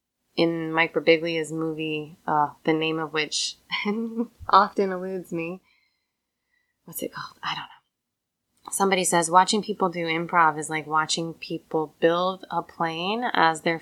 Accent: American